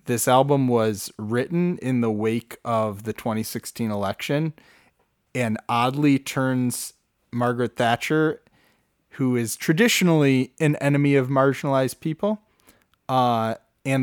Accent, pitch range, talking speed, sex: American, 110-145 Hz, 110 wpm, male